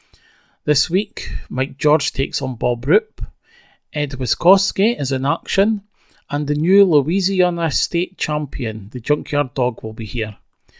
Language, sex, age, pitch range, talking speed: English, male, 40-59, 130-170 Hz, 140 wpm